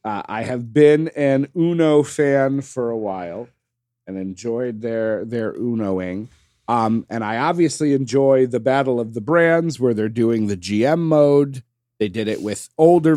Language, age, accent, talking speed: English, 40-59, American, 170 wpm